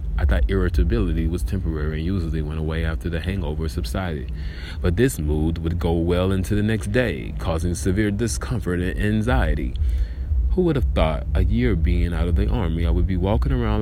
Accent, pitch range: American, 75-95 Hz